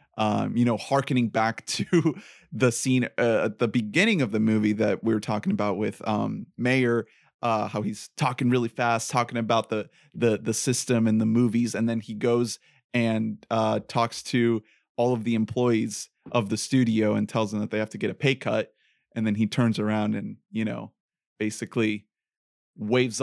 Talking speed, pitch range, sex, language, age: 190 wpm, 110-125 Hz, male, English, 30-49